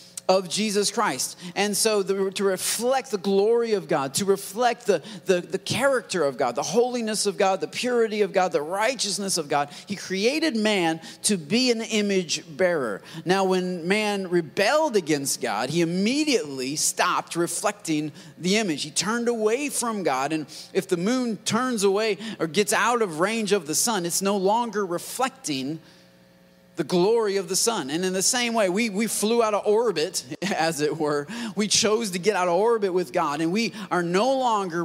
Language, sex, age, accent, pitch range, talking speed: English, male, 30-49, American, 175-230 Hz, 185 wpm